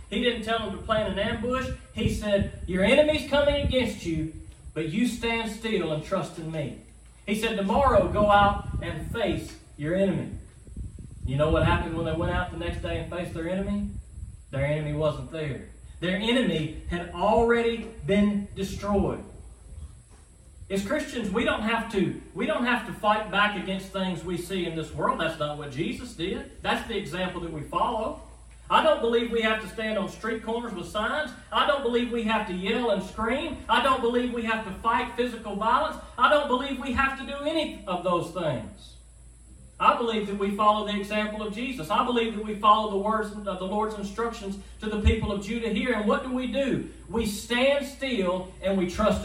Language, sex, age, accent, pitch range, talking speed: English, male, 30-49, American, 175-235 Hz, 195 wpm